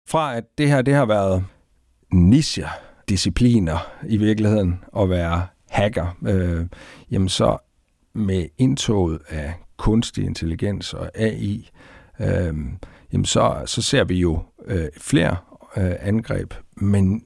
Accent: native